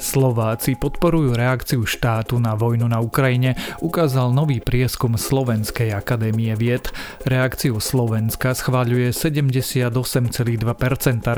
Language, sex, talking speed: Slovak, male, 95 wpm